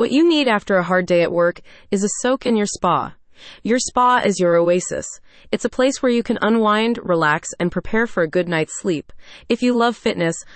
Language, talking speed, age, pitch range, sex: English, 220 wpm, 20-39, 175-240 Hz, female